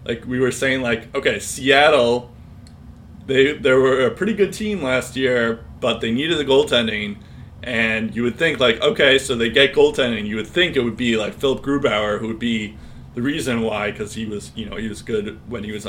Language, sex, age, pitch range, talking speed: English, male, 20-39, 110-135 Hz, 215 wpm